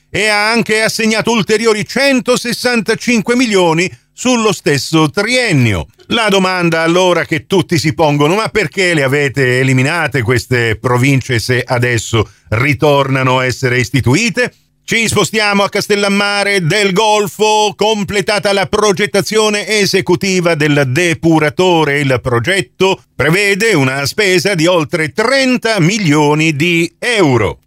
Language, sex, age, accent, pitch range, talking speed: Italian, male, 50-69, native, 140-205 Hz, 115 wpm